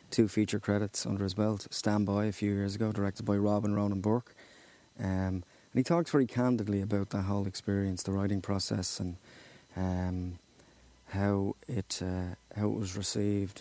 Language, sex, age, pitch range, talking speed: English, male, 30-49, 100-115 Hz, 170 wpm